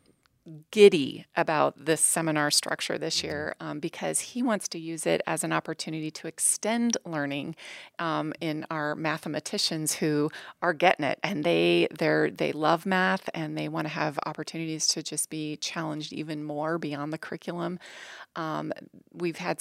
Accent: American